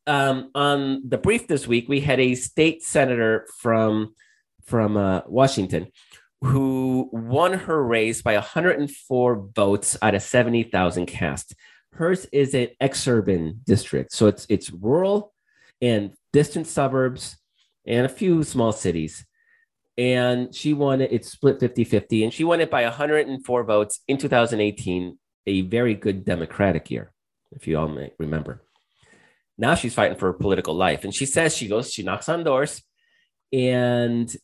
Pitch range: 100-135 Hz